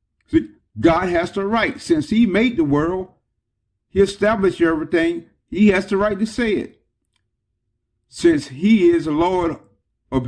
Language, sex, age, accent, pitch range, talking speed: English, male, 50-69, American, 125-200 Hz, 145 wpm